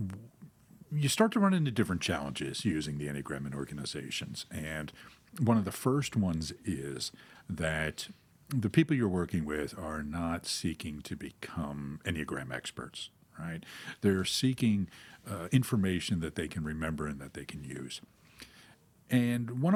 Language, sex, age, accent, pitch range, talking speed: English, male, 50-69, American, 75-105 Hz, 145 wpm